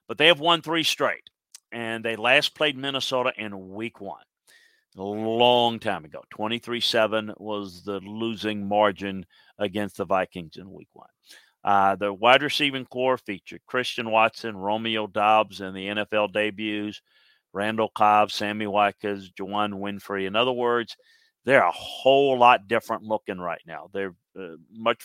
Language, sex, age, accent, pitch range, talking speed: English, male, 50-69, American, 100-120 Hz, 150 wpm